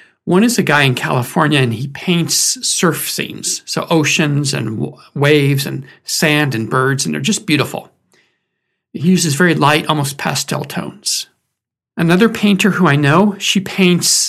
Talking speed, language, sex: 155 wpm, English, male